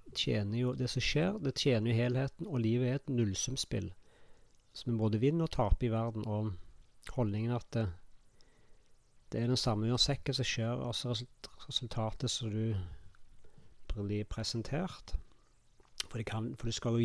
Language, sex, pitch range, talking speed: English, male, 110-125 Hz, 150 wpm